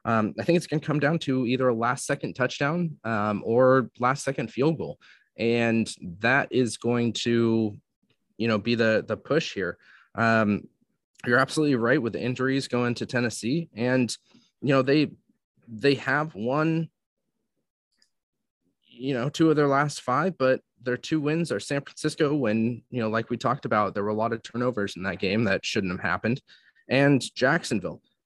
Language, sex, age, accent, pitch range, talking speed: English, male, 20-39, American, 110-140 Hz, 180 wpm